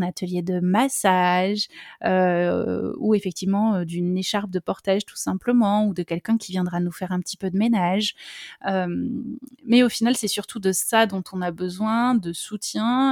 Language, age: French, 20-39